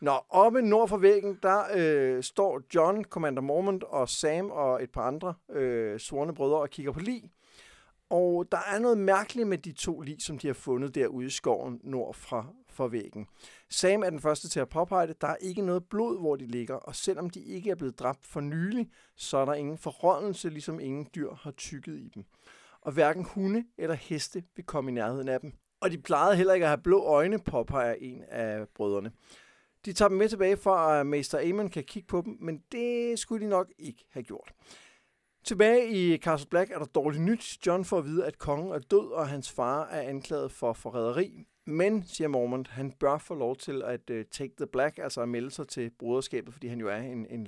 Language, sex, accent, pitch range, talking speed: Danish, male, native, 135-195 Hz, 220 wpm